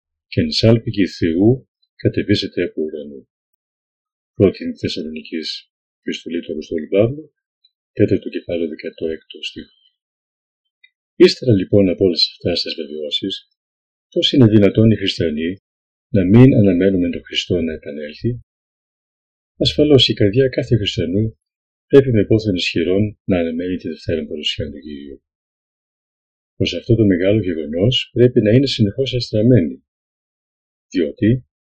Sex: male